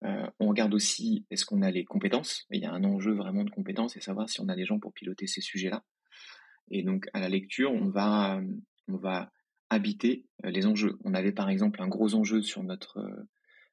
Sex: male